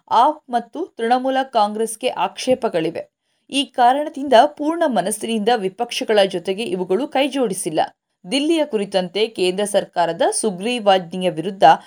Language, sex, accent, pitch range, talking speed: Kannada, female, native, 190-255 Hz, 95 wpm